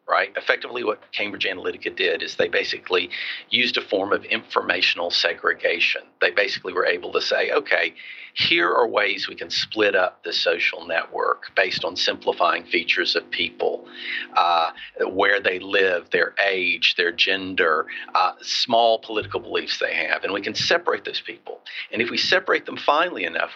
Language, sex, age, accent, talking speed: English, male, 50-69, American, 165 wpm